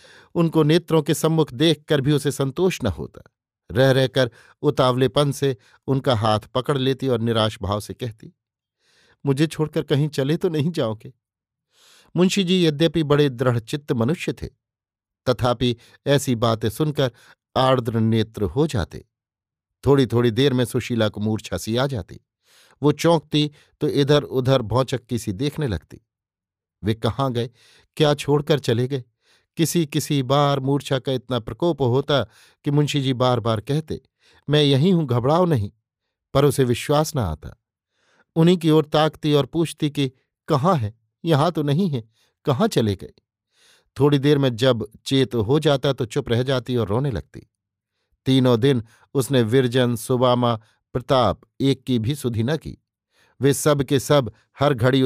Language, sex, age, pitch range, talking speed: Hindi, male, 50-69, 115-150 Hz, 155 wpm